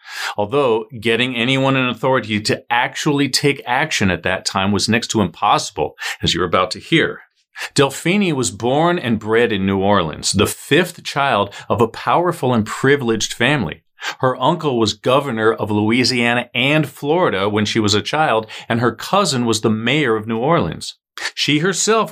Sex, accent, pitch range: male, American, 105-145 Hz